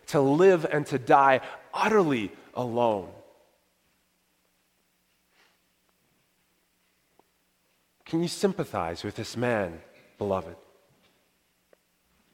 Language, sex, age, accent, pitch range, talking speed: English, male, 30-49, American, 100-135 Hz, 70 wpm